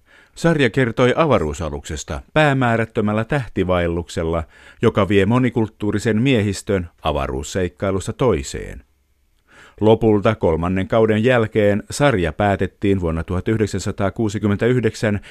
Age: 50-69